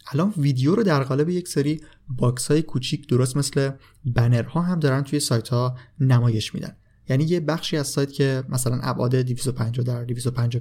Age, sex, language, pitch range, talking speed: 30-49, male, Persian, 120-145 Hz, 180 wpm